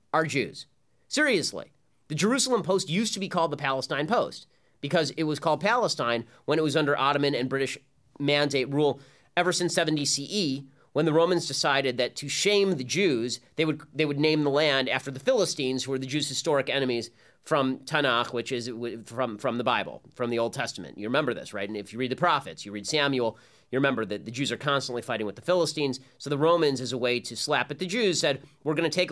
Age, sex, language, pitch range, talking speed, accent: 30-49, male, English, 130-170 Hz, 220 wpm, American